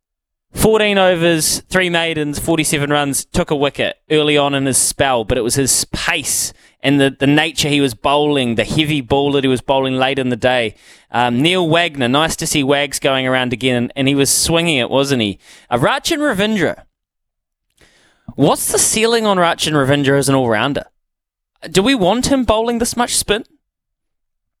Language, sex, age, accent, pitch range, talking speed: English, male, 20-39, Australian, 125-165 Hz, 180 wpm